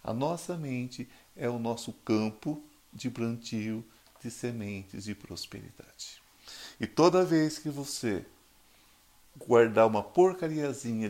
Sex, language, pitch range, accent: male, Portuguese, 105-130 Hz, Brazilian